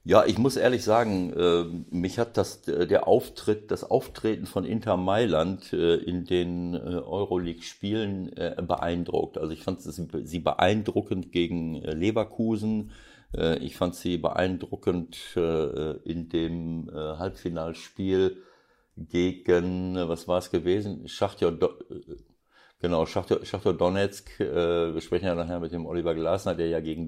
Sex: male